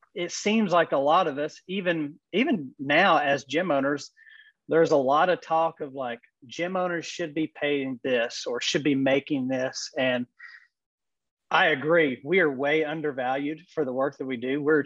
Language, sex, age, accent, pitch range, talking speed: English, male, 40-59, American, 135-180 Hz, 180 wpm